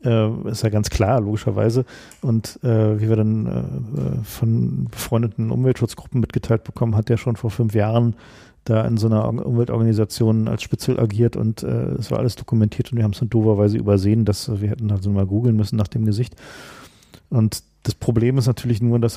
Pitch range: 105-120 Hz